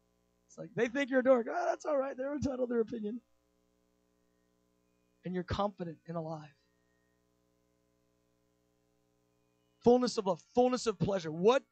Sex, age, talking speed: male, 30-49, 145 wpm